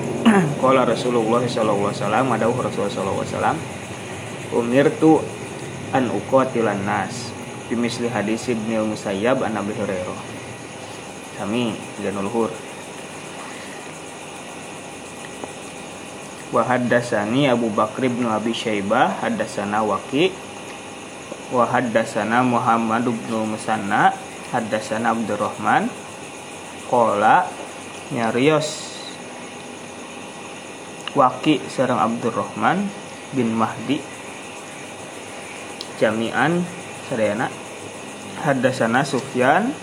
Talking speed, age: 75 wpm, 20-39